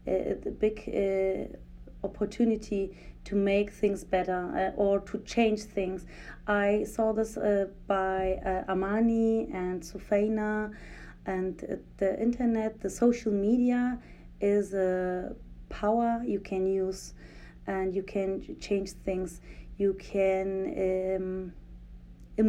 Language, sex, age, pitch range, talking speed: English, female, 30-49, 185-220 Hz, 115 wpm